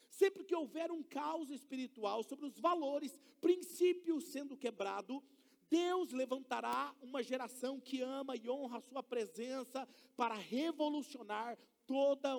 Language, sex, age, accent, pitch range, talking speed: Portuguese, male, 40-59, Brazilian, 255-315 Hz, 125 wpm